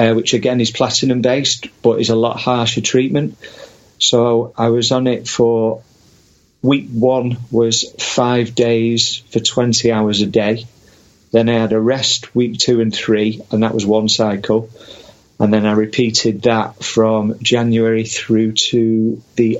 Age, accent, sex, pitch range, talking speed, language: 40-59, British, male, 110-125 Hz, 155 wpm, English